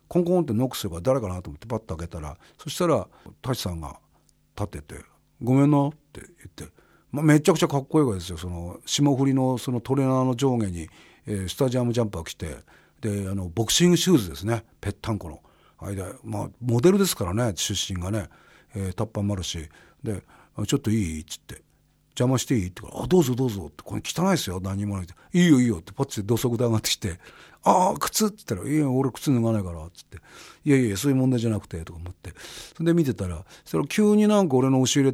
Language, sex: Japanese, male